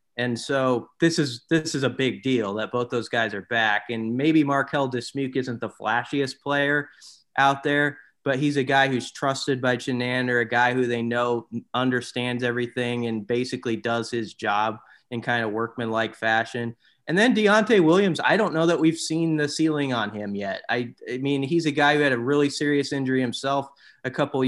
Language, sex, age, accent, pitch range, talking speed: English, male, 20-39, American, 120-140 Hz, 200 wpm